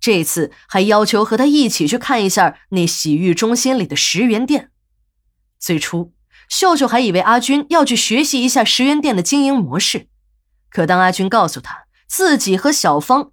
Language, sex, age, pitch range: Chinese, female, 20-39, 170-255 Hz